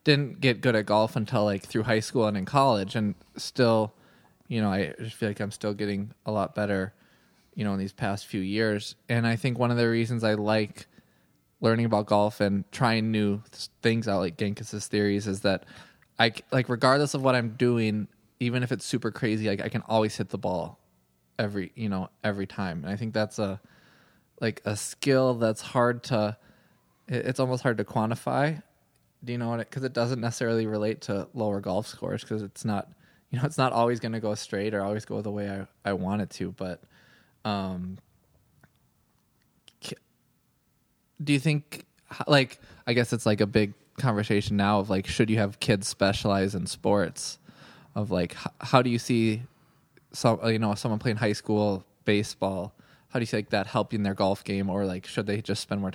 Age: 20-39